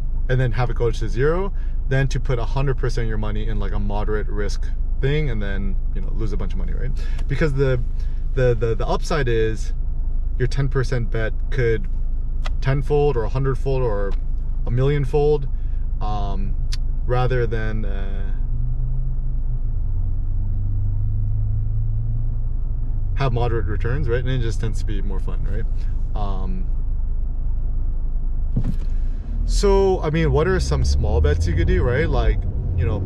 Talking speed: 150 wpm